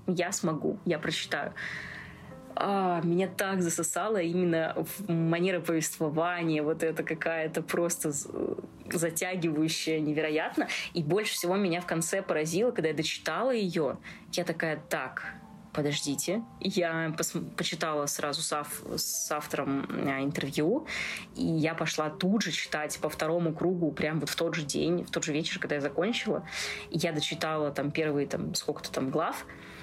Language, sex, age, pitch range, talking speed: Russian, female, 20-39, 155-185 Hz, 145 wpm